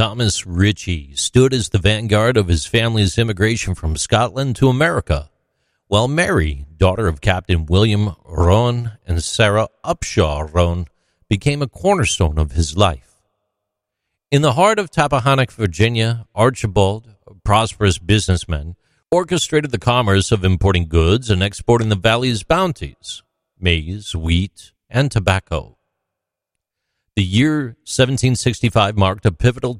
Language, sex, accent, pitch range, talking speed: English, male, American, 90-120 Hz, 125 wpm